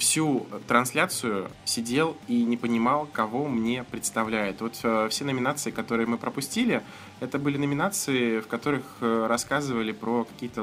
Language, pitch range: Russian, 105-130 Hz